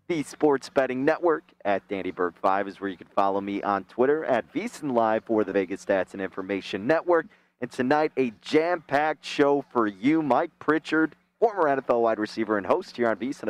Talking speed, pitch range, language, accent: 185 wpm, 115-150 Hz, English, American